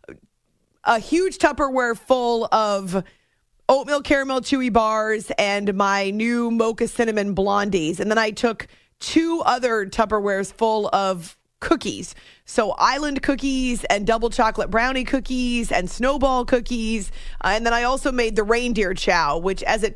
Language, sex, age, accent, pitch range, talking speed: English, female, 30-49, American, 195-235 Hz, 145 wpm